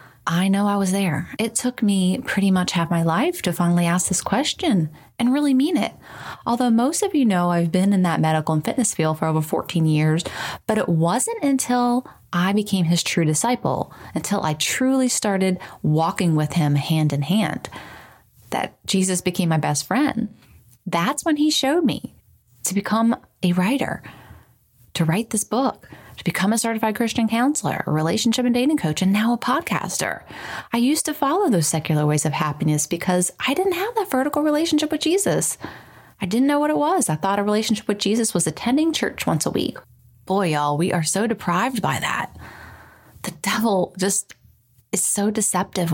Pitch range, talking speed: 160-240 Hz, 185 wpm